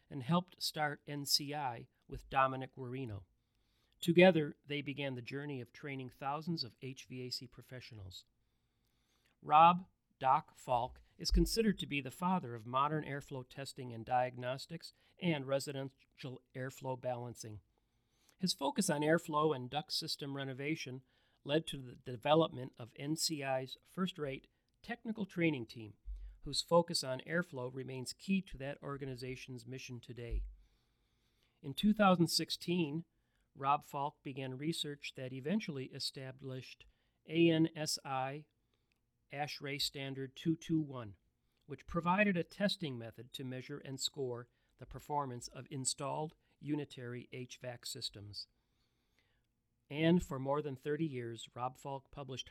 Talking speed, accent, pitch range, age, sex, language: 120 wpm, American, 125-150 Hz, 40-59, male, English